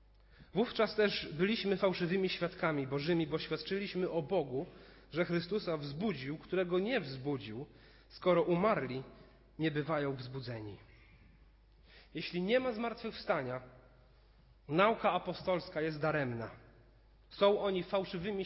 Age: 40-59